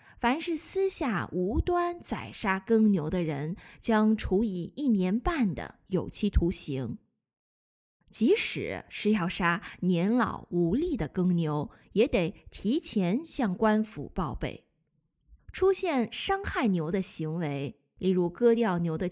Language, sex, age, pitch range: Chinese, female, 20-39, 165-230 Hz